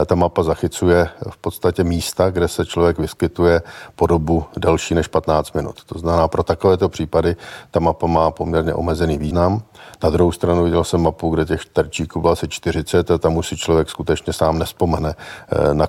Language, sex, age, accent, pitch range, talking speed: Czech, male, 50-69, native, 80-85 Hz, 180 wpm